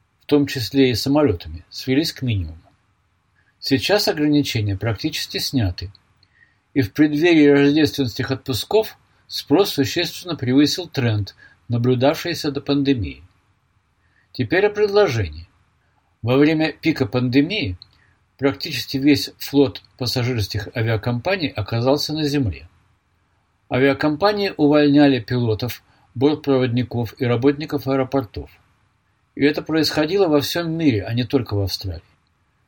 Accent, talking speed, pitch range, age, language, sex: native, 105 wpm, 105-145 Hz, 50-69, Russian, male